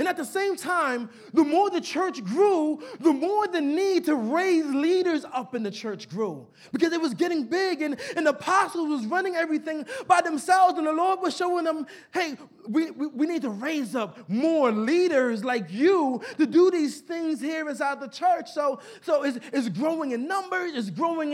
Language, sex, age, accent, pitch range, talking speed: English, male, 30-49, American, 255-340 Hz, 200 wpm